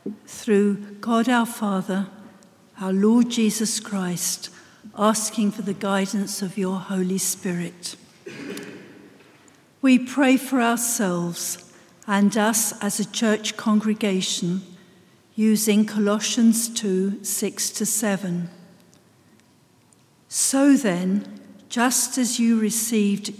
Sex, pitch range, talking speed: female, 190-230 Hz, 90 wpm